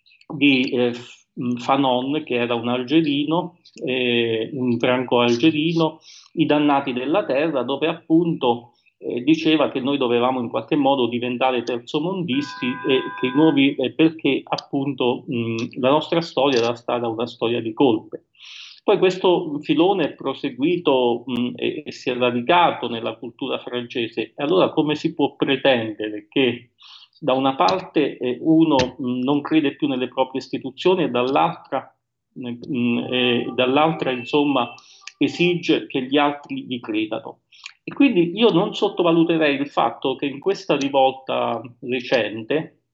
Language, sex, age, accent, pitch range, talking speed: Italian, male, 40-59, native, 125-160 Hz, 135 wpm